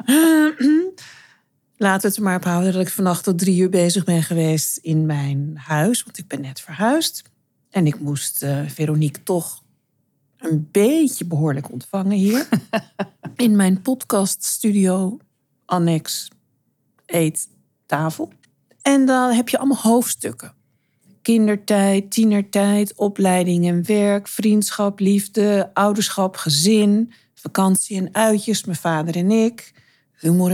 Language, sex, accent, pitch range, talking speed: Dutch, female, Dutch, 155-210 Hz, 125 wpm